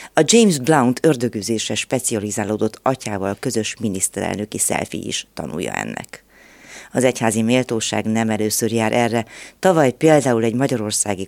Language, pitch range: Hungarian, 110-140 Hz